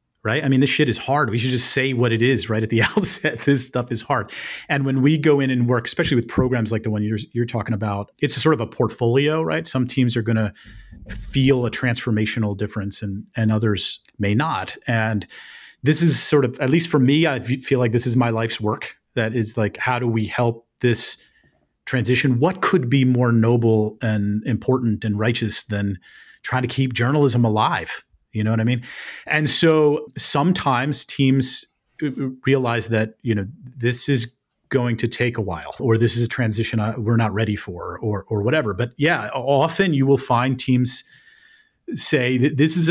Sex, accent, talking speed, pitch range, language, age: male, American, 200 wpm, 110-135 Hz, English, 30-49